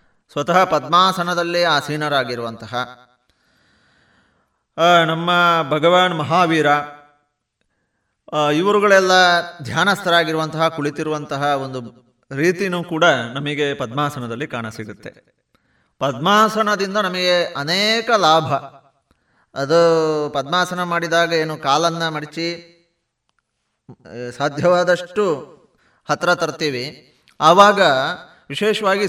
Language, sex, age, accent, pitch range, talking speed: Kannada, male, 30-49, native, 145-180 Hz, 60 wpm